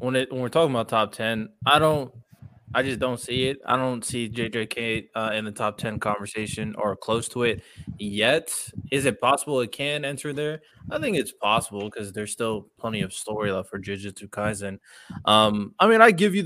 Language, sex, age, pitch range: English, male, 20-39, 105-125 Hz